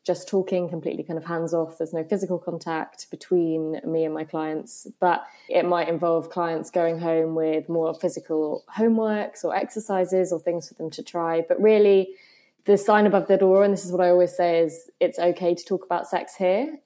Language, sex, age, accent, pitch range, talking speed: English, female, 20-39, British, 165-185 Hz, 205 wpm